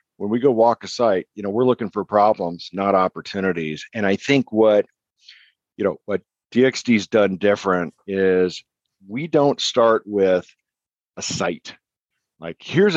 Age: 50-69